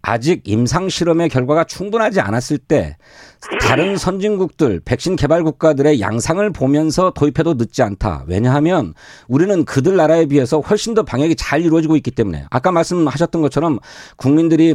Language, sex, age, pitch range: Korean, male, 40-59, 135-195 Hz